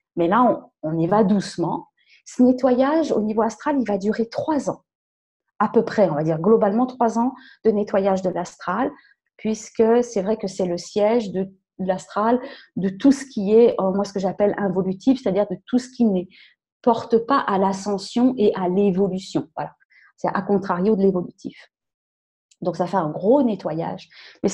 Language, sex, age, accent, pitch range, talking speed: French, female, 30-49, French, 190-255 Hz, 185 wpm